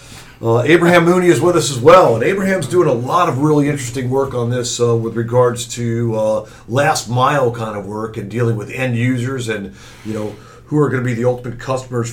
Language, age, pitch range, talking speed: English, 50-69, 115-150 Hz, 225 wpm